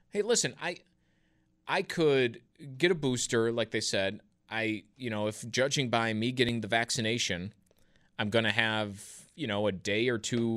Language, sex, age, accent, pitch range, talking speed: English, male, 30-49, American, 115-150 Hz, 175 wpm